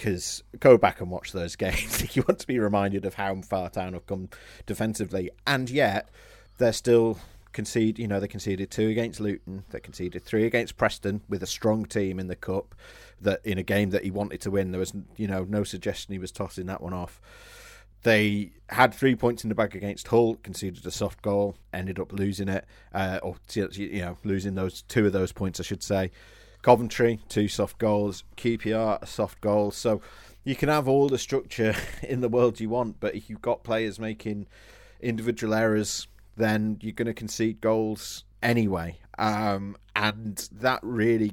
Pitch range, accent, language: 95-110 Hz, British, English